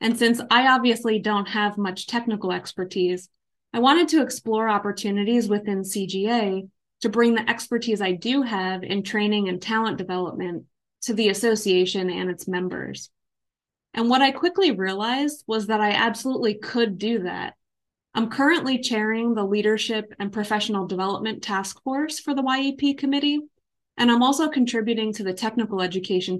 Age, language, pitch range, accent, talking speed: 20-39, English, 195-240 Hz, American, 155 wpm